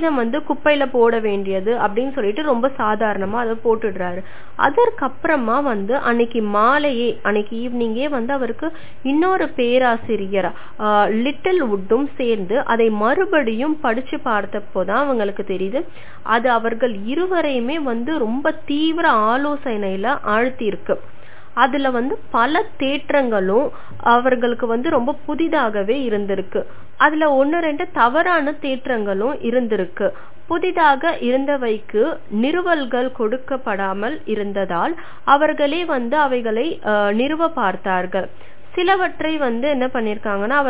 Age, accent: 20-39, native